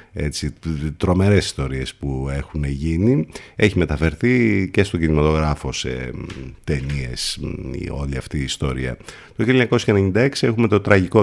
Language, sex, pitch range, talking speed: Greek, male, 75-105 Hz, 120 wpm